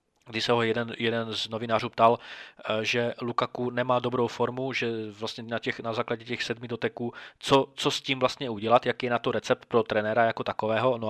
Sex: male